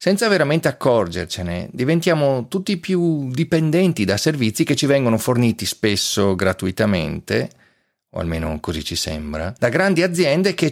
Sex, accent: male, native